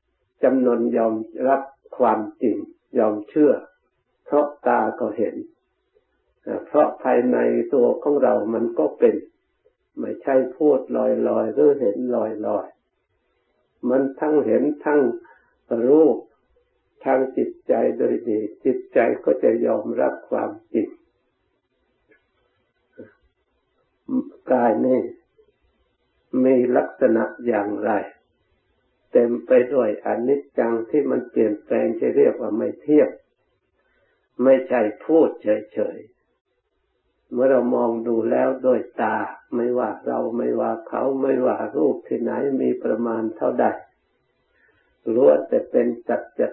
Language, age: Thai, 60-79